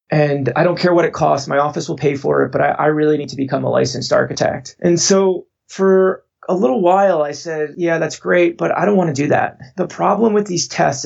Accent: American